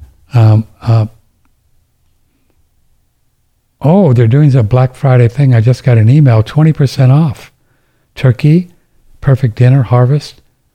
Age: 60-79